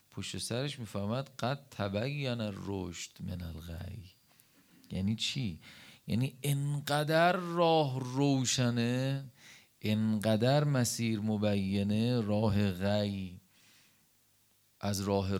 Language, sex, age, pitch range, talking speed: Persian, male, 40-59, 110-160 Hz, 80 wpm